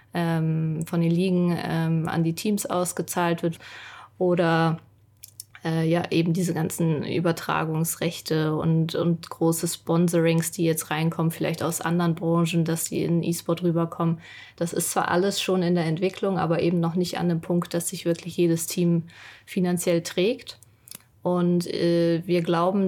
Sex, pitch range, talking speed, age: female, 165-185 Hz, 150 wpm, 20-39